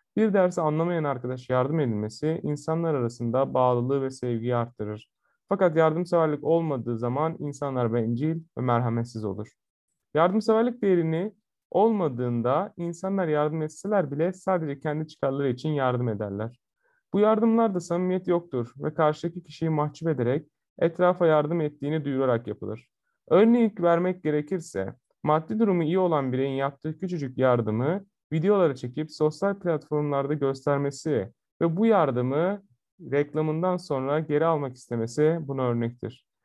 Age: 30-49